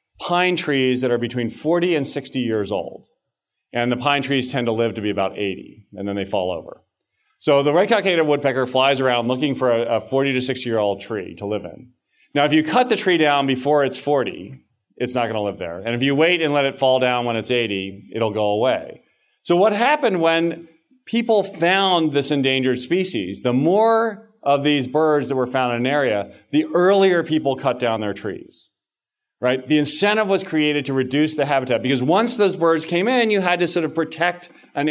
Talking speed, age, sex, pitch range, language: 210 wpm, 40-59, male, 120-175 Hz, English